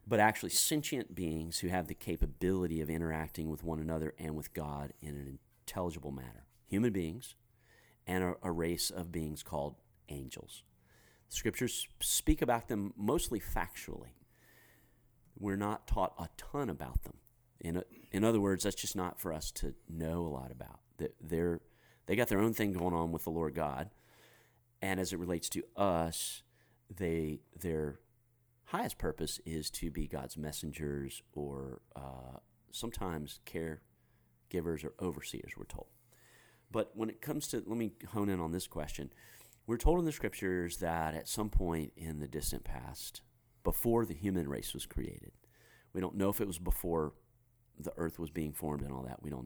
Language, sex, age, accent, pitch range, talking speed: English, male, 40-59, American, 80-115 Hz, 170 wpm